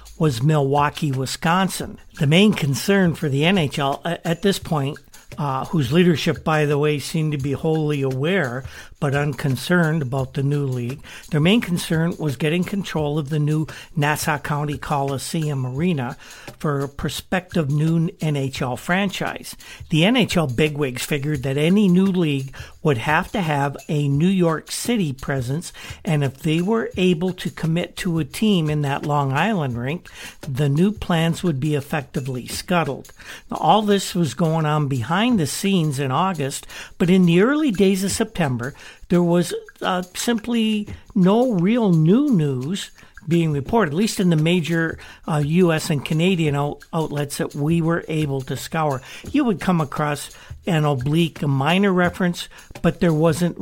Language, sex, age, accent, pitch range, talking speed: English, male, 60-79, American, 145-180 Hz, 160 wpm